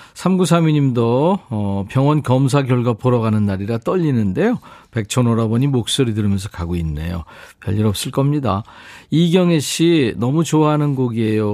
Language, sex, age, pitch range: Korean, male, 50-69, 110-155 Hz